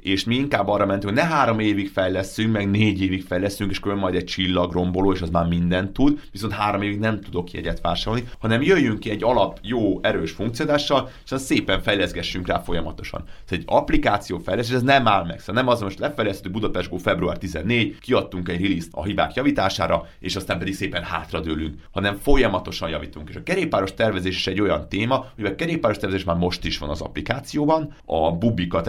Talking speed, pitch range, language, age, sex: 200 wpm, 85-110 Hz, Hungarian, 30-49, male